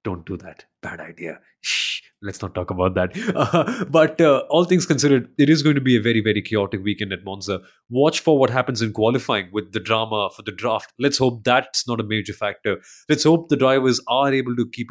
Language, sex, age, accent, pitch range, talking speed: English, male, 30-49, Indian, 110-160 Hz, 225 wpm